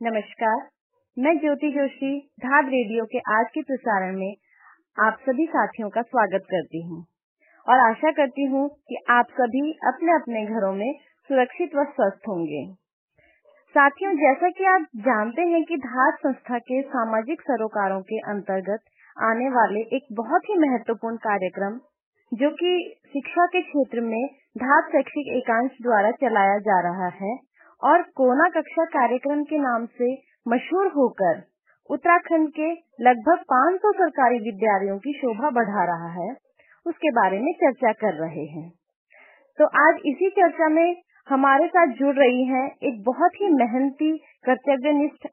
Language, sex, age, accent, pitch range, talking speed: Hindi, female, 20-39, native, 220-300 Hz, 145 wpm